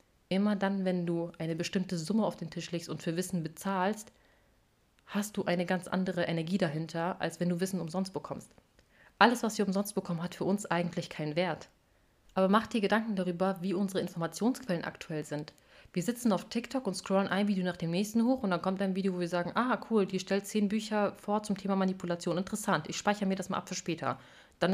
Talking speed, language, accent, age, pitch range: 215 wpm, German, German, 30-49, 175-205 Hz